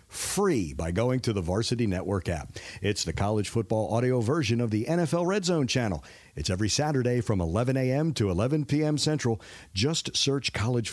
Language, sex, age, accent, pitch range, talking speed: English, male, 50-69, American, 100-135 Hz, 180 wpm